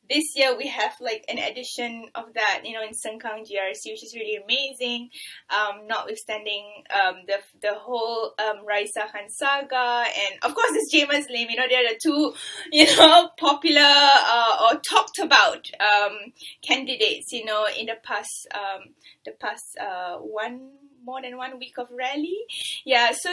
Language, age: English, 10-29